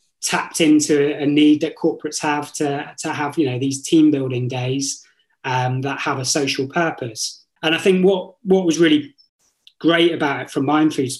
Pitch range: 140-170 Hz